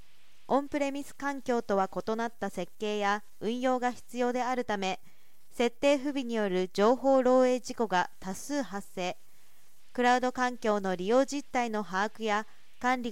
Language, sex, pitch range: Japanese, female, 205-260 Hz